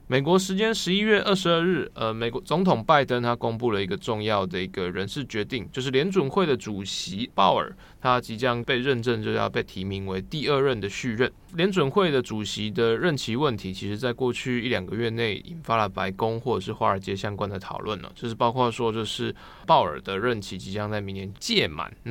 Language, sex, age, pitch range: Chinese, male, 20-39, 105-130 Hz